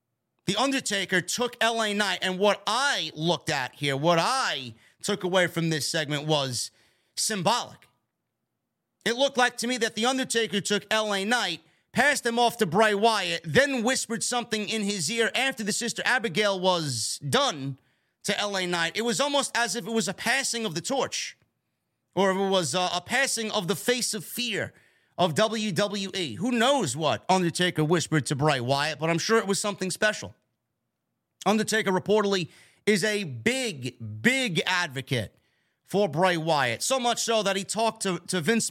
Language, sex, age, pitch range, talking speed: English, male, 30-49, 165-225 Hz, 170 wpm